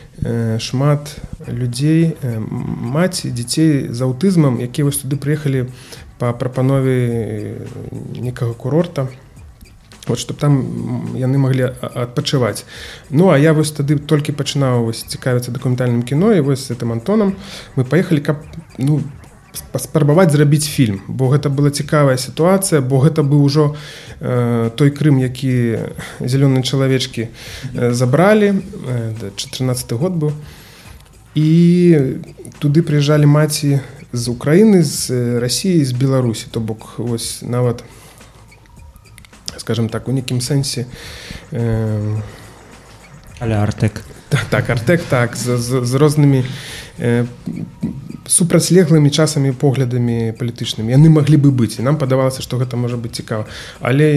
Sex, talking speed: male, 125 wpm